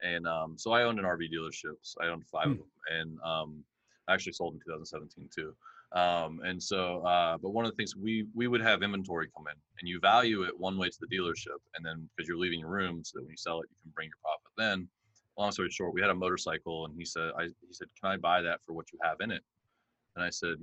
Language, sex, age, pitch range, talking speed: English, male, 20-39, 85-100 Hz, 265 wpm